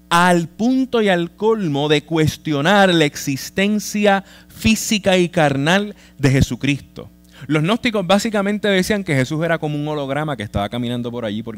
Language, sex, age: Spanish, male, 20-39